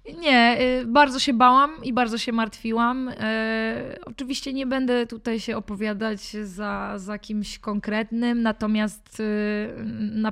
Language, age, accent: Polish, 20-39, native